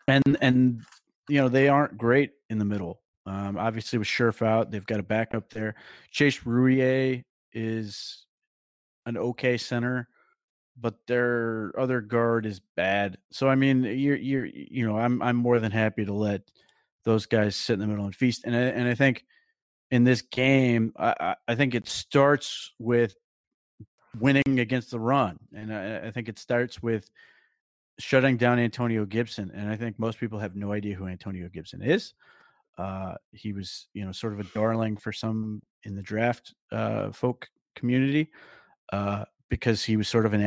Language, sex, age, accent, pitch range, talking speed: English, male, 30-49, American, 105-125 Hz, 175 wpm